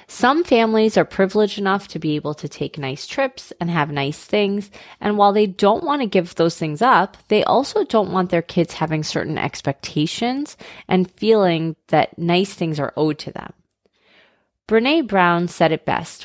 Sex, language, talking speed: female, English, 180 wpm